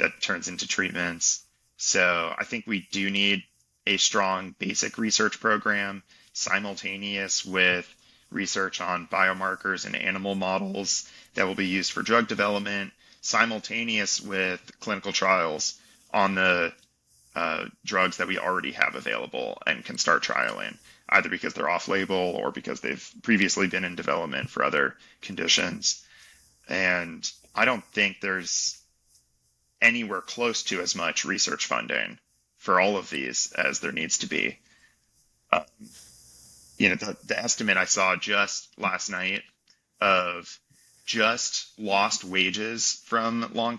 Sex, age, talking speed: male, 30-49, 135 wpm